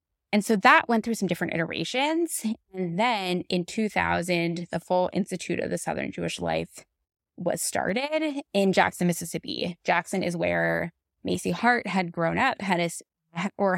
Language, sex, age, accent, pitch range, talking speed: English, female, 20-39, American, 170-215 Hz, 150 wpm